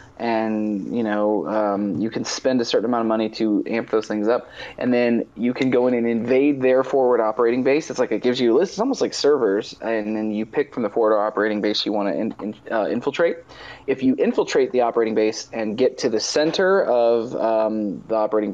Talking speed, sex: 225 wpm, male